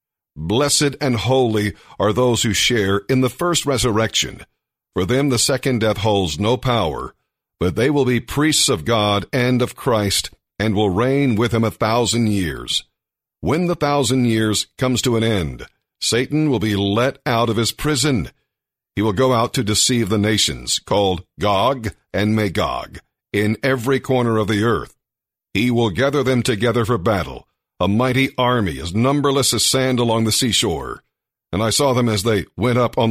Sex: male